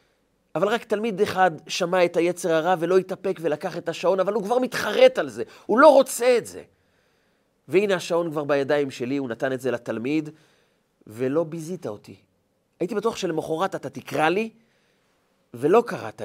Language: Hebrew